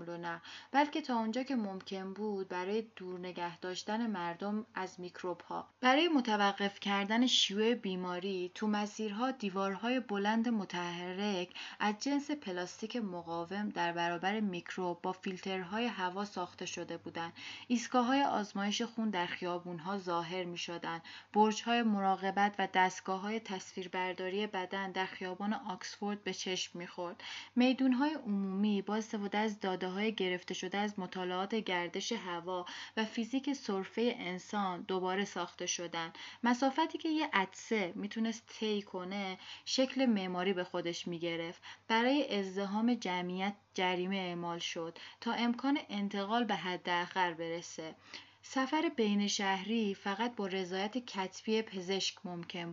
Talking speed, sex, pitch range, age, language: 120 wpm, female, 180-225 Hz, 20-39, Persian